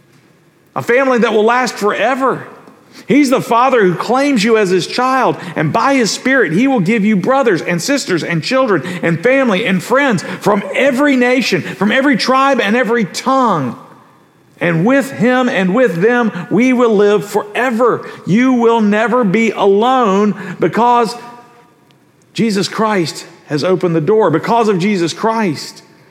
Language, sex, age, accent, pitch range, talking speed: English, male, 50-69, American, 175-240 Hz, 155 wpm